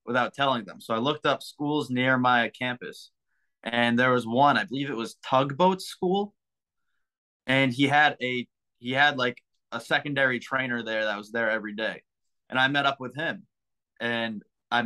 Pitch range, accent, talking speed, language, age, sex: 120-140 Hz, American, 180 wpm, English, 20-39, male